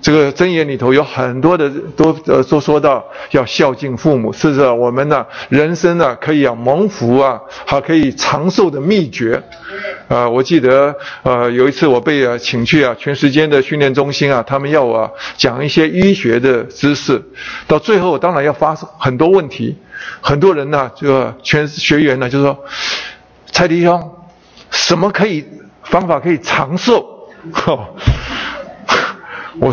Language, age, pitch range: Chinese, 50-69, 135-175 Hz